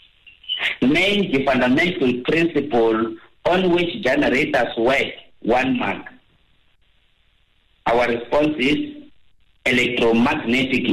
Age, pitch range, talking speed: 50-69, 120-175 Hz, 75 wpm